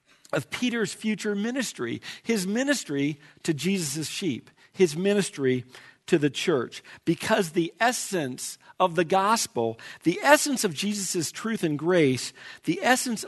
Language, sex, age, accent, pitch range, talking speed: English, male, 50-69, American, 150-220 Hz, 130 wpm